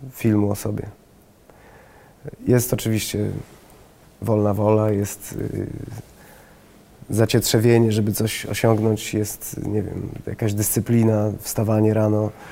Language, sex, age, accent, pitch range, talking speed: Polish, male, 30-49, native, 110-125 Hz, 95 wpm